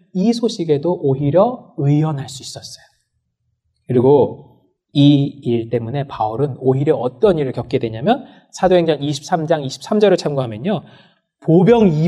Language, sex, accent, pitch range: Korean, male, native, 130-195 Hz